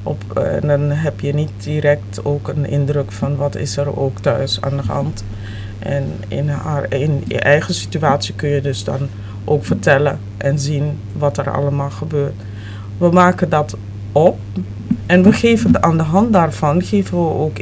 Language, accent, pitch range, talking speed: Dutch, Dutch, 100-145 Hz, 170 wpm